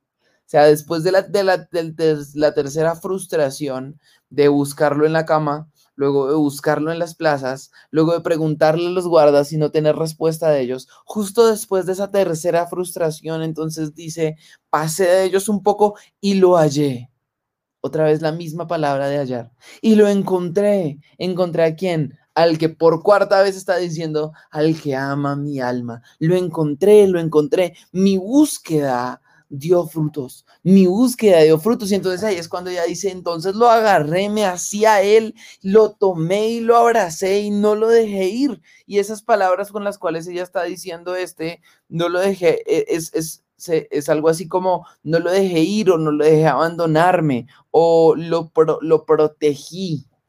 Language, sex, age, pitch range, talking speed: Spanish, male, 20-39, 150-190 Hz, 165 wpm